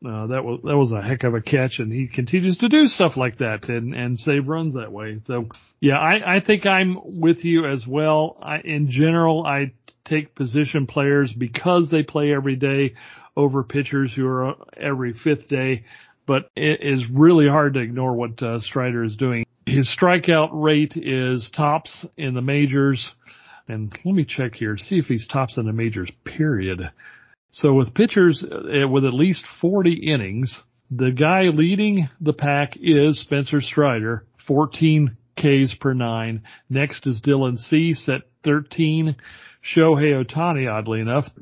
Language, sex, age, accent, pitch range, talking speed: English, male, 40-59, American, 125-155 Hz, 170 wpm